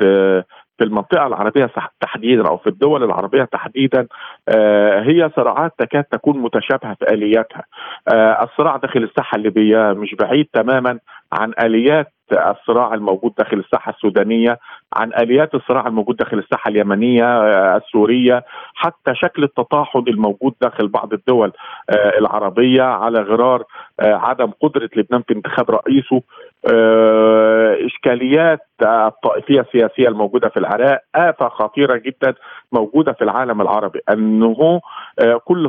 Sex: male